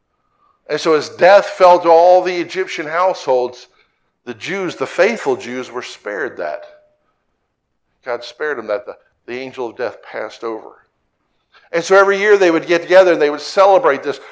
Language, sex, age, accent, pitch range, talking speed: English, male, 50-69, American, 150-190 Hz, 175 wpm